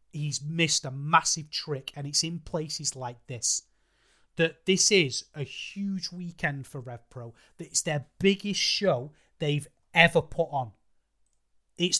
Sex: male